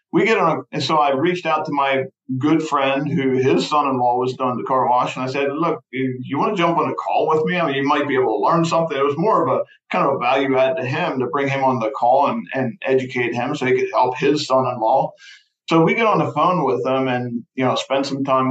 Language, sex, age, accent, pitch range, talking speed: English, male, 50-69, American, 125-145 Hz, 280 wpm